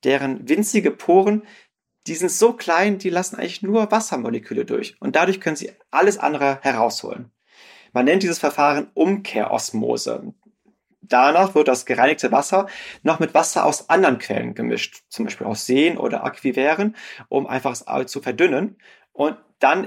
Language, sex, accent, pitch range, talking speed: German, male, German, 130-185 Hz, 150 wpm